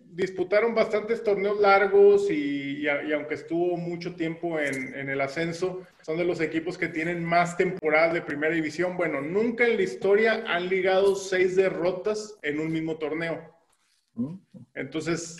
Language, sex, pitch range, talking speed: Spanish, male, 155-210 Hz, 155 wpm